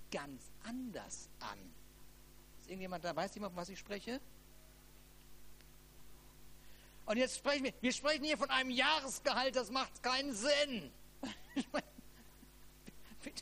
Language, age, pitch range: German, 50-69, 140-215 Hz